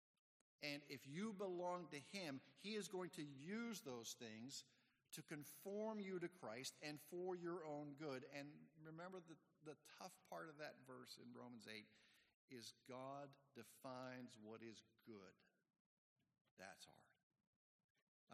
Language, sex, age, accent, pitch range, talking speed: English, male, 50-69, American, 120-150 Hz, 140 wpm